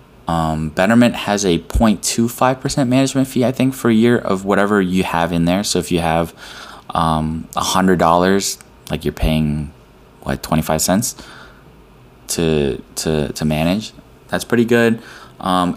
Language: English